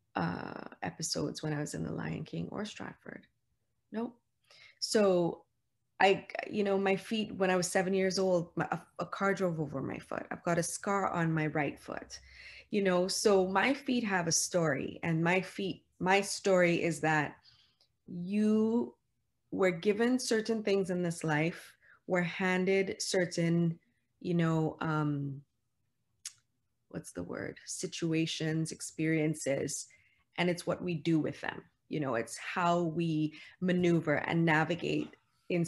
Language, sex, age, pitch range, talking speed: English, female, 20-39, 155-185 Hz, 150 wpm